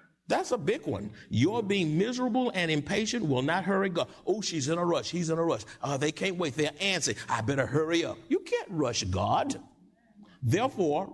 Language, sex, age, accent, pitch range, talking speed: English, male, 60-79, American, 140-190 Hz, 200 wpm